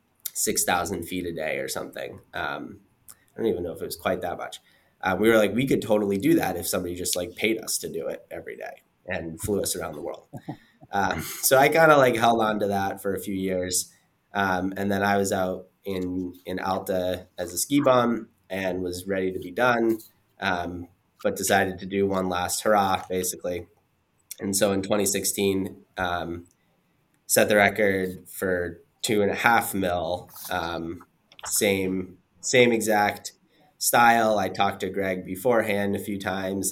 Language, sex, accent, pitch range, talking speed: English, male, American, 90-100 Hz, 185 wpm